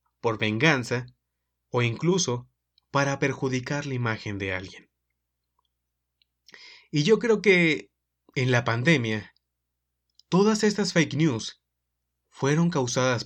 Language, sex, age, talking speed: Spanish, male, 30-49, 105 wpm